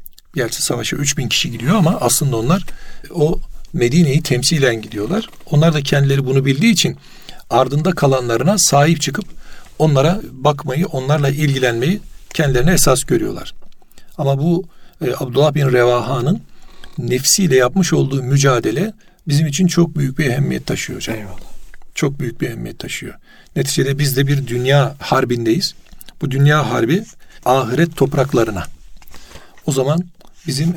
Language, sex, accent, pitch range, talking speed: Turkish, male, native, 130-165 Hz, 130 wpm